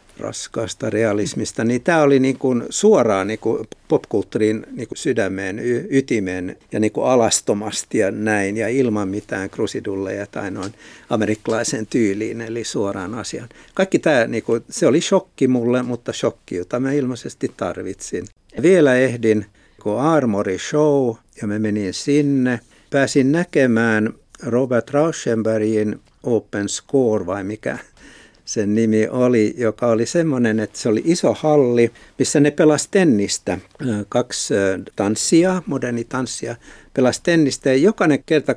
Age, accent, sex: 60-79, native, male